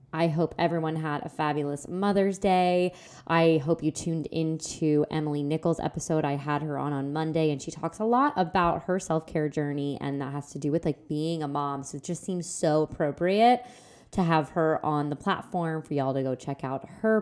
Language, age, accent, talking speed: English, 20-39, American, 210 wpm